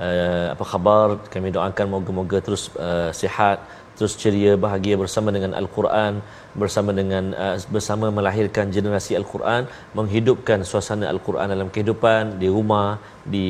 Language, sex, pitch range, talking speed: Malayalam, male, 95-115 Hz, 135 wpm